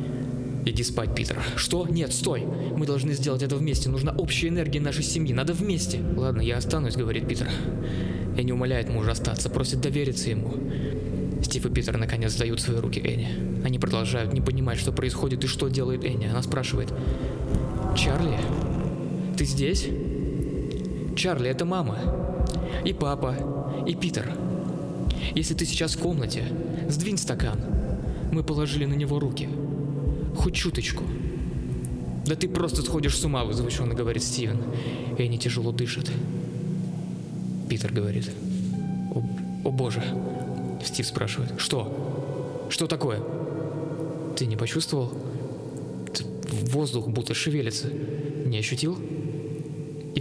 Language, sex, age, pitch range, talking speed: Russian, male, 20-39, 115-150 Hz, 130 wpm